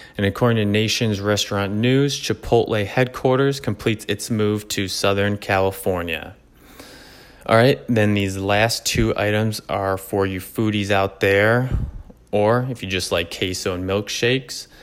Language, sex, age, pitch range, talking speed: English, male, 20-39, 95-115 Hz, 140 wpm